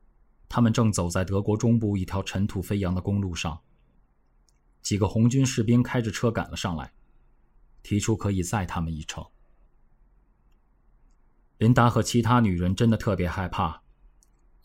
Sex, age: male, 20-39